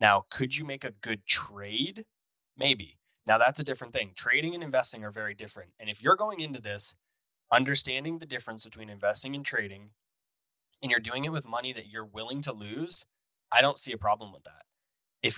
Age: 10-29